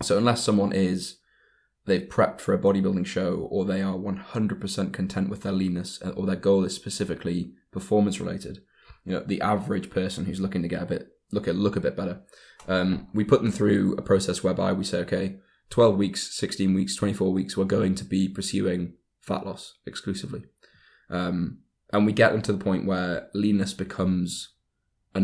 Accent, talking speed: British, 190 wpm